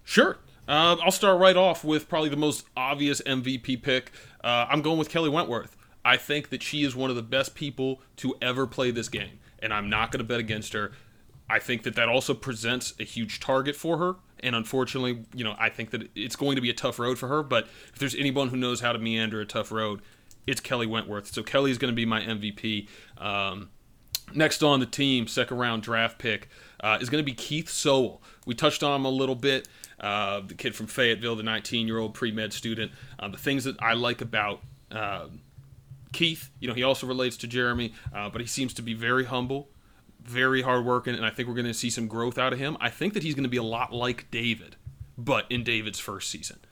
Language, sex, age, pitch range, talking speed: English, male, 30-49, 110-135 Hz, 230 wpm